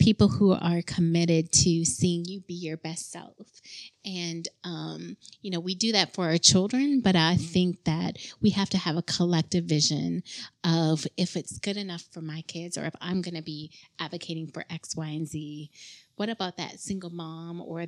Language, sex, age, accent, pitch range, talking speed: English, female, 30-49, American, 160-180 Hz, 195 wpm